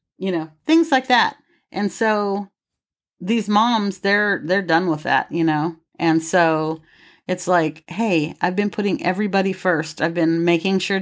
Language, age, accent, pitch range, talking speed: English, 40-59, American, 165-210 Hz, 165 wpm